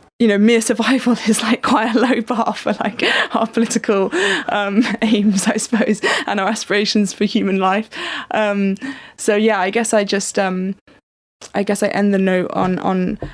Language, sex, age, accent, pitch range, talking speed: English, female, 20-39, British, 190-220 Hz, 175 wpm